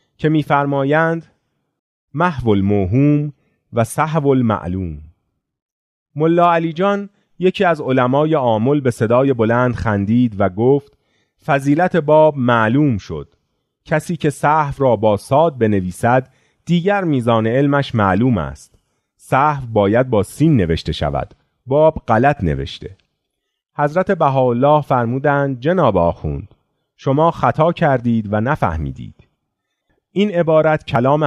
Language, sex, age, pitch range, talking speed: Persian, male, 30-49, 105-155 Hz, 110 wpm